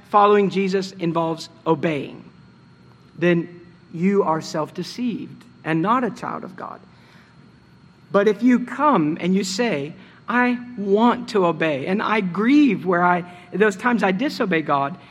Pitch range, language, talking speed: 165-220 Hz, English, 140 wpm